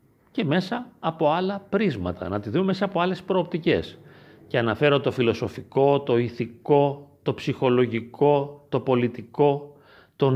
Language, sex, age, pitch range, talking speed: Greek, male, 40-59, 120-170 Hz, 135 wpm